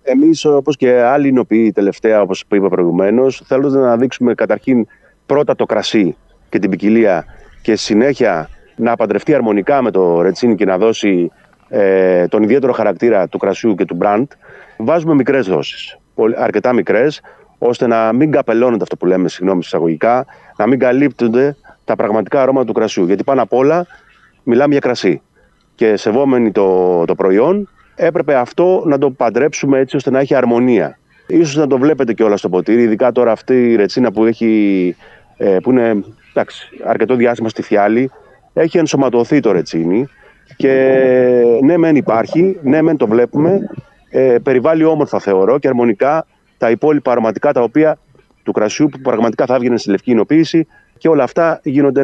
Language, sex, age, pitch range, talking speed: Greek, male, 30-49, 110-140 Hz, 165 wpm